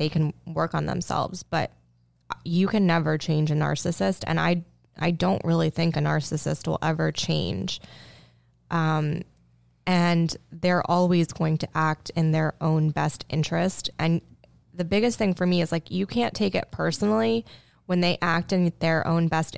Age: 20-39